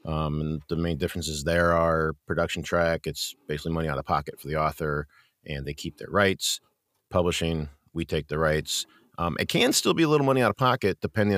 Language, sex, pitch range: English, male, 80-90 Hz